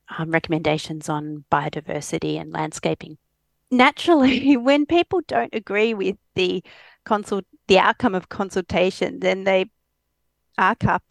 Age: 40-59